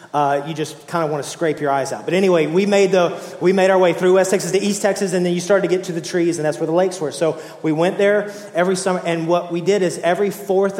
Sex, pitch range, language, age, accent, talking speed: male, 145-170 Hz, English, 30-49, American, 300 wpm